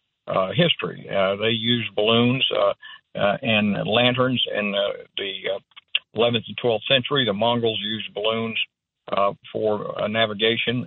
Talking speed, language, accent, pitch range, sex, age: 145 wpm, English, American, 105-120 Hz, male, 50-69